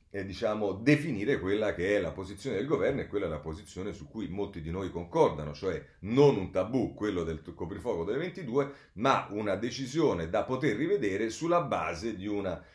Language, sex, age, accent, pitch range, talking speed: Italian, male, 40-59, native, 80-115 Hz, 190 wpm